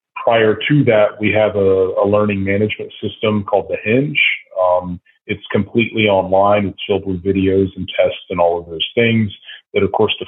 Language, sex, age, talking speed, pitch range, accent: English, male, 30-49, 185 wpm, 95-105 Hz, American